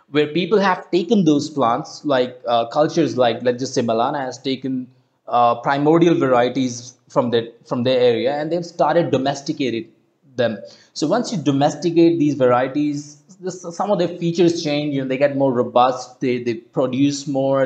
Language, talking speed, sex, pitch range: English, 175 wpm, male, 125-160 Hz